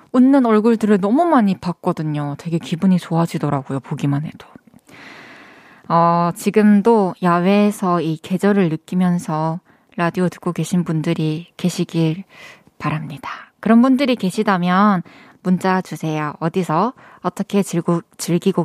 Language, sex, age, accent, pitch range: Korean, female, 20-39, native, 165-240 Hz